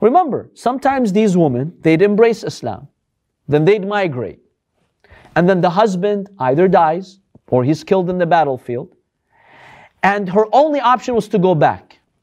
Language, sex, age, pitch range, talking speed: English, male, 40-59, 160-230 Hz, 145 wpm